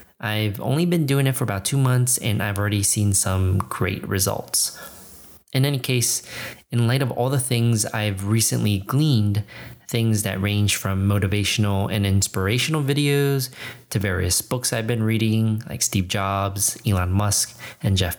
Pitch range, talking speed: 100-125 Hz, 160 wpm